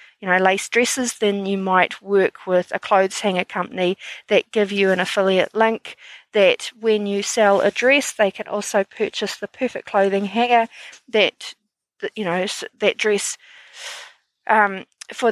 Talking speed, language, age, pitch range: 160 wpm, English, 40-59, 195-230 Hz